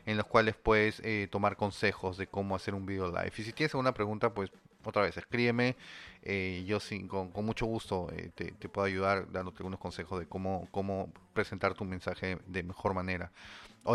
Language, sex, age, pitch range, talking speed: Spanish, male, 30-49, 95-120 Hz, 195 wpm